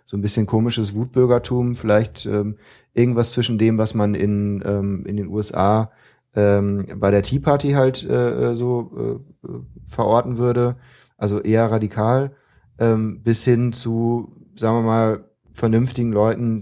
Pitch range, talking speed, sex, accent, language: 100-115 Hz, 145 wpm, male, German, German